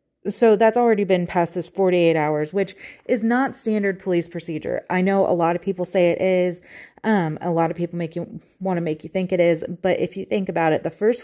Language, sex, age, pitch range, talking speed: English, female, 30-49, 160-190 Hz, 240 wpm